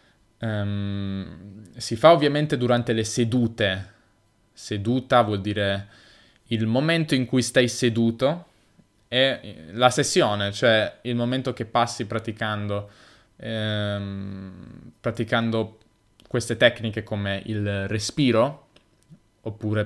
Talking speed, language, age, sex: 100 wpm, Italian, 20-39, male